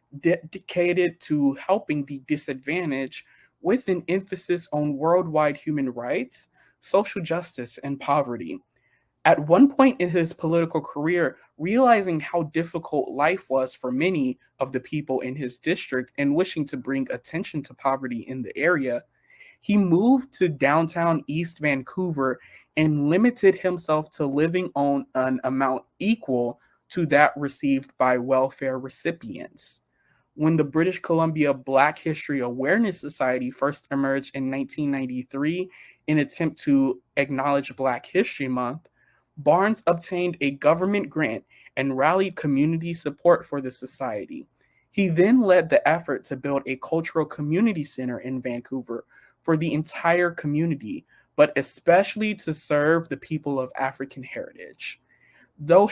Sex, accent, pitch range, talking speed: male, American, 135-170 Hz, 135 wpm